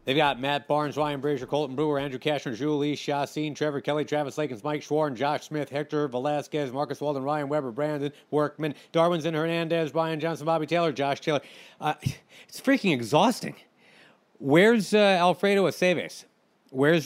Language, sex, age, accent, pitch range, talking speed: English, male, 40-59, American, 130-165 Hz, 160 wpm